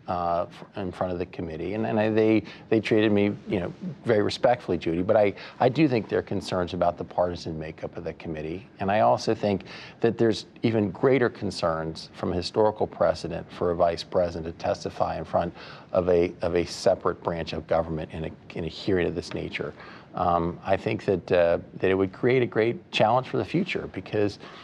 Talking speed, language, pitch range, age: 205 wpm, English, 90-115 Hz, 40-59